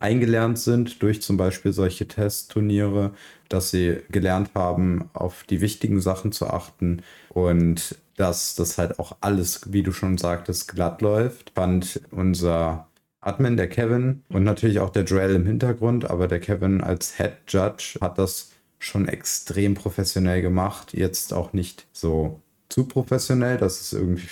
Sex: male